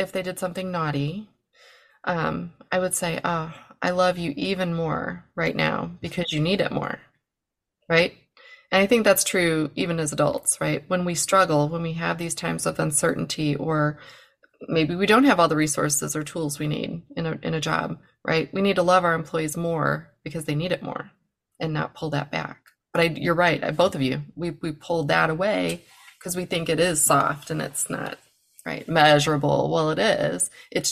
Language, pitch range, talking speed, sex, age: English, 155-185 Hz, 205 wpm, female, 20-39